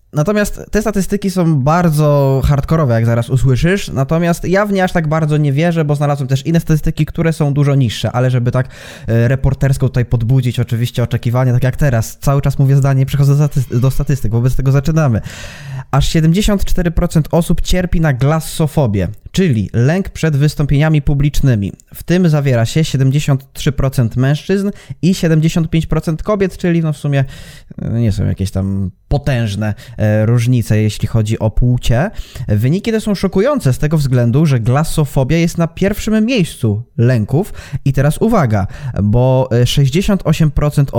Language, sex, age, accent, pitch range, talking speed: Polish, male, 20-39, native, 125-165 Hz, 150 wpm